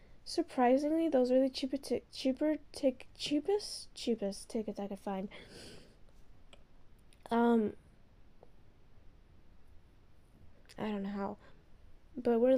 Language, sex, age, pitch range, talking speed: English, female, 10-29, 210-290 Hz, 100 wpm